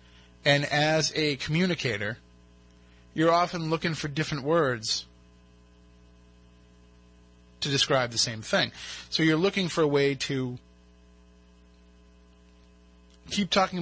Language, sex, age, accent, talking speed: English, male, 30-49, American, 105 wpm